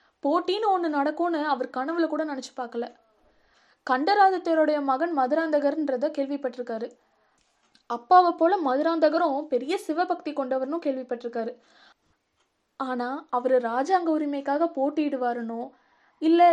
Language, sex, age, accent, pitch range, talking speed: Tamil, female, 20-39, native, 265-330 Hz, 50 wpm